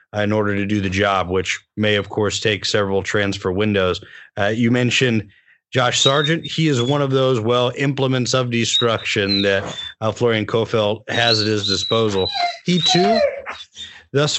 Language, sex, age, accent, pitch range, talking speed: English, male, 30-49, American, 105-125 Hz, 165 wpm